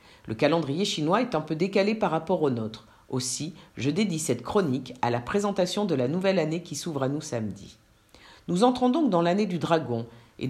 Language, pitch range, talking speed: French, 120-185 Hz, 205 wpm